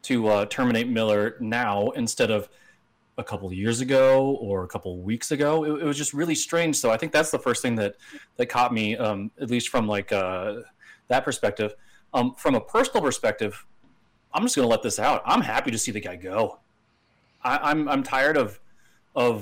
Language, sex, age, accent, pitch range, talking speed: English, male, 30-49, American, 105-130 Hz, 205 wpm